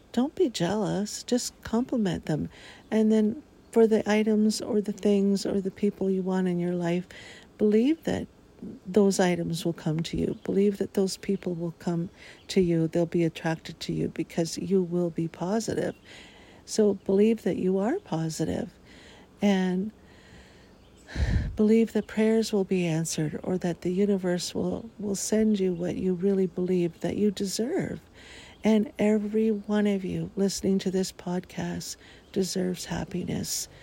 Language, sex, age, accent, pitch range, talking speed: English, female, 50-69, American, 170-205 Hz, 155 wpm